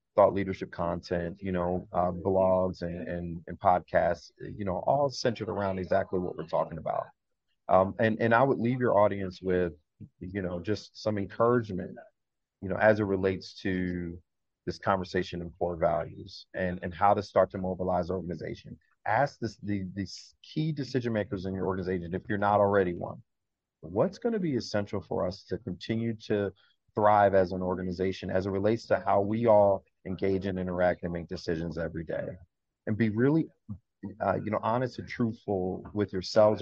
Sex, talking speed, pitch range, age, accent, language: male, 180 wpm, 95-110 Hz, 30-49, American, English